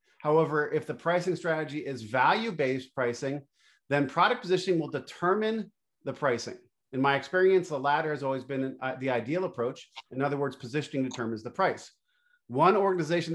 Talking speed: 155 wpm